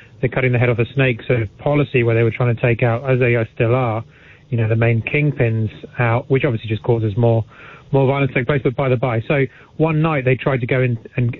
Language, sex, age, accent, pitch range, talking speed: English, male, 30-49, British, 115-135 Hz, 270 wpm